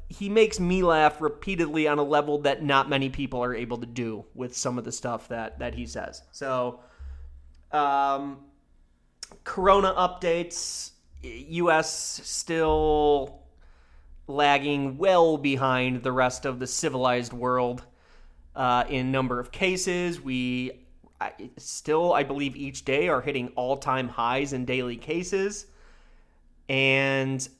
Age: 30-49